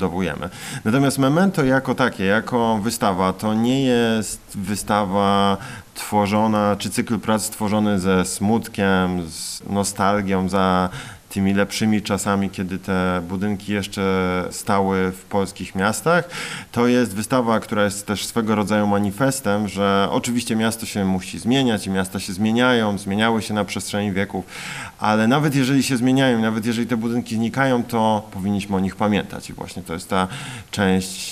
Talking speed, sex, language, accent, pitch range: 145 wpm, male, Polish, native, 100-130 Hz